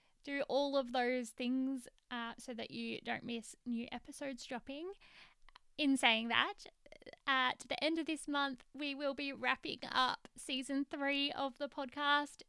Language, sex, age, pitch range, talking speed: English, female, 10-29, 240-280 Hz, 160 wpm